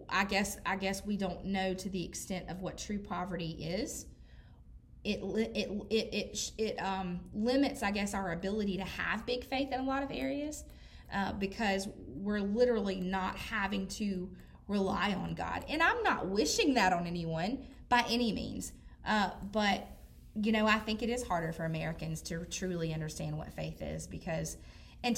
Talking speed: 175 wpm